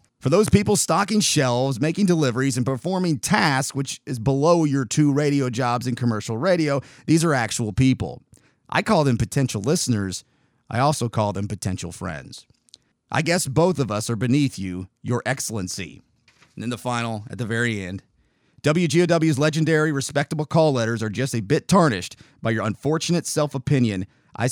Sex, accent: male, American